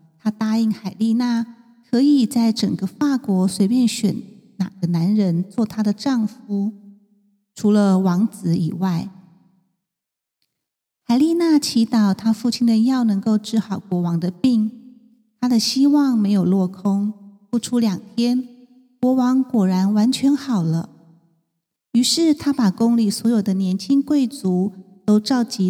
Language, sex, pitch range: Chinese, female, 200-250 Hz